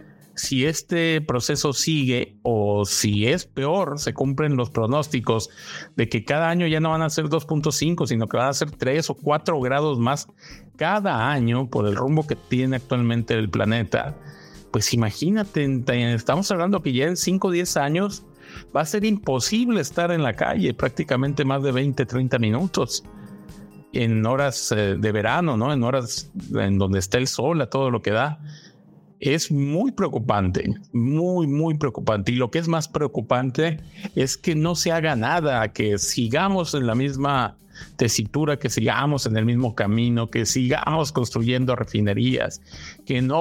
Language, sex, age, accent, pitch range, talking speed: Spanish, male, 50-69, Mexican, 115-155 Hz, 165 wpm